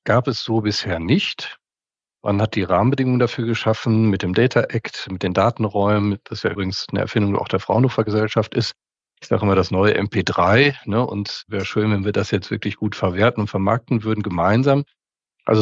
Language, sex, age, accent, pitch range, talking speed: German, male, 40-59, German, 100-120 Hz, 200 wpm